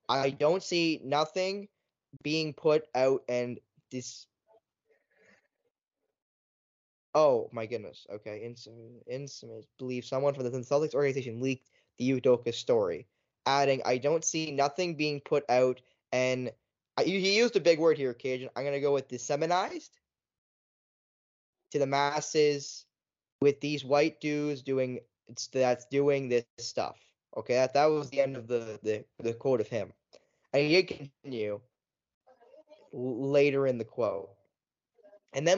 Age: 10-29